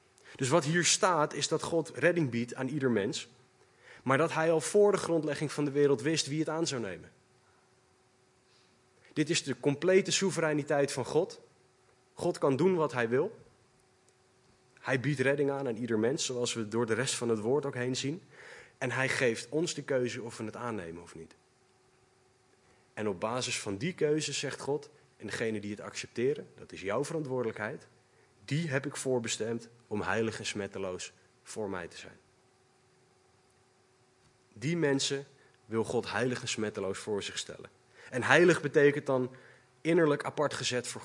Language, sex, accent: Dutch, male, Dutch